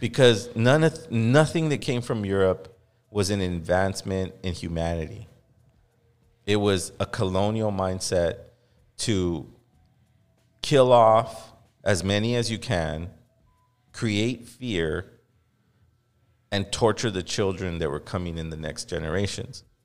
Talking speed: 120 wpm